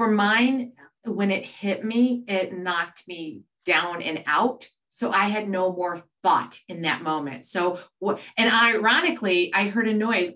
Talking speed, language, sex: 160 wpm, English, female